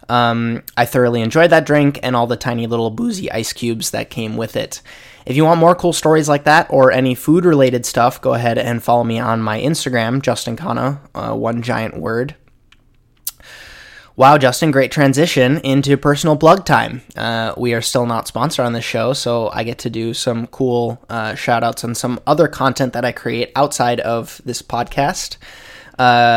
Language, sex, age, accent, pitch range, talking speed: English, male, 20-39, American, 120-145 Hz, 185 wpm